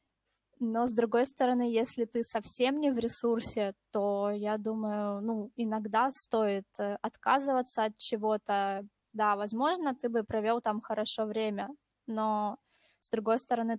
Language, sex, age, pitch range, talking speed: Russian, female, 20-39, 210-240 Hz, 135 wpm